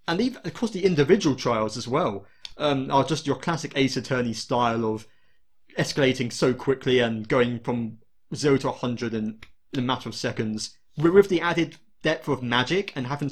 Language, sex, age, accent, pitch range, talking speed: English, male, 30-49, British, 120-155 Hz, 190 wpm